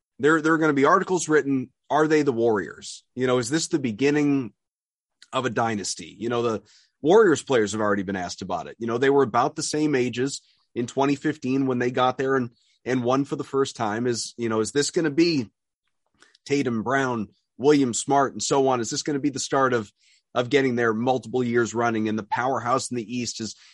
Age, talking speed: 30-49, 225 wpm